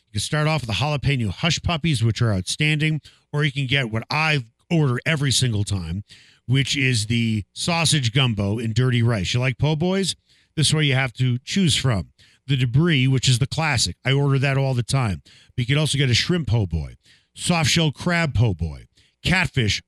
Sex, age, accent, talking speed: male, 50-69, American, 200 wpm